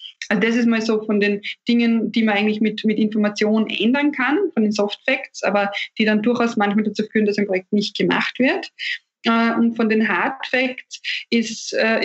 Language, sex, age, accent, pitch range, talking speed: German, female, 20-39, German, 205-235 Hz, 190 wpm